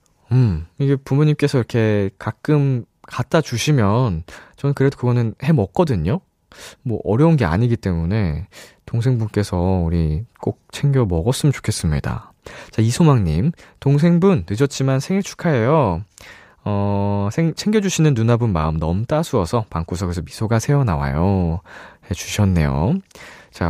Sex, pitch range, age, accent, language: male, 95-155 Hz, 20-39, native, Korean